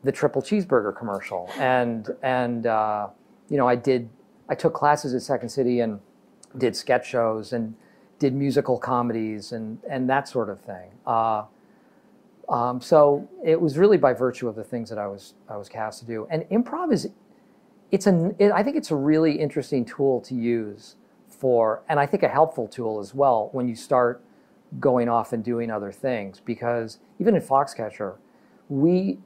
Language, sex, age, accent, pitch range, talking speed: English, male, 40-59, American, 115-150 Hz, 180 wpm